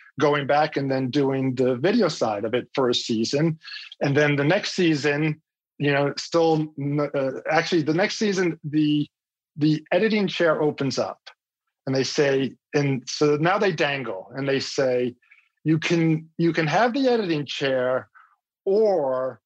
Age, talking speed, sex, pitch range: 40-59, 160 wpm, male, 135-170 Hz